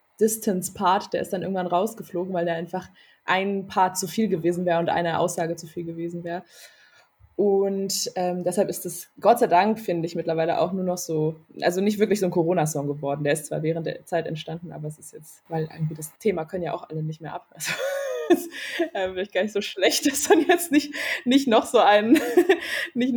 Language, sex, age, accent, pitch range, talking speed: German, female, 20-39, German, 175-220 Hz, 210 wpm